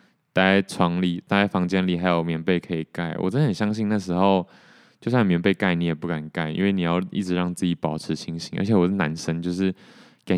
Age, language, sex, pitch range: 20-39, Chinese, male, 85-100 Hz